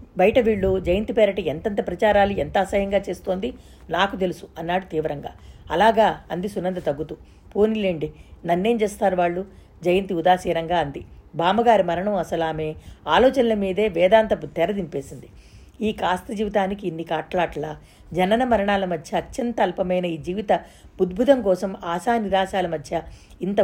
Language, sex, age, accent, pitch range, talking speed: Telugu, female, 50-69, native, 175-220 Hz, 125 wpm